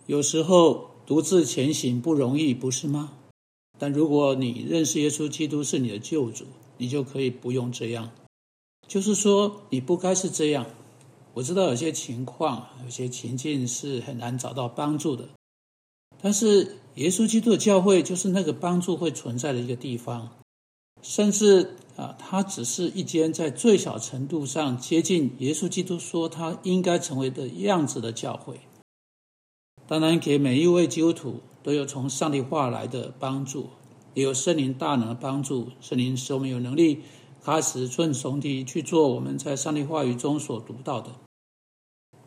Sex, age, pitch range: male, 60-79, 125-165 Hz